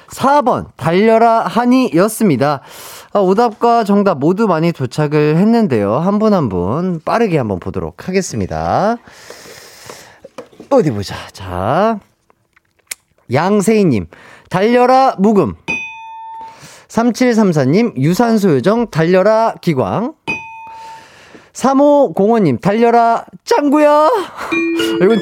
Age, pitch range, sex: 30-49, 155-245 Hz, male